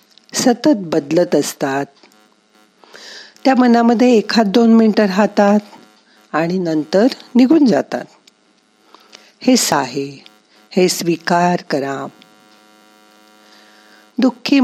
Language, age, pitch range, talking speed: Marathi, 50-69, 145-220 Hz, 45 wpm